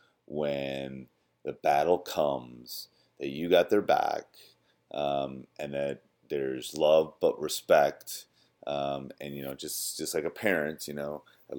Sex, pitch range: male, 70-85 Hz